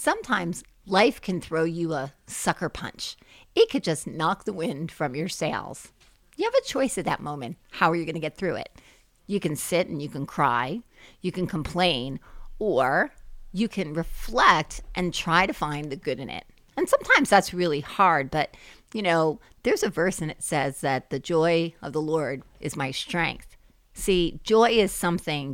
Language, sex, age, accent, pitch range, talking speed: English, female, 40-59, American, 150-205 Hz, 190 wpm